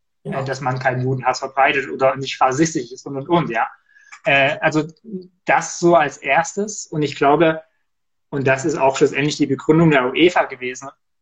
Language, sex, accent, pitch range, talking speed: German, male, German, 135-155 Hz, 170 wpm